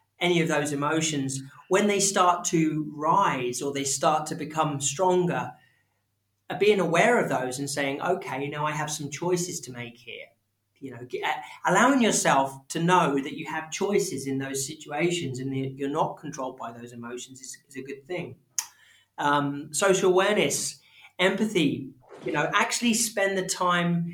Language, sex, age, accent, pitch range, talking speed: English, male, 30-49, British, 140-185 Hz, 165 wpm